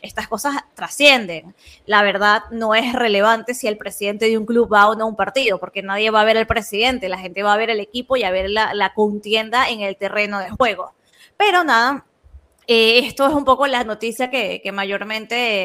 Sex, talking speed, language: female, 220 wpm, Spanish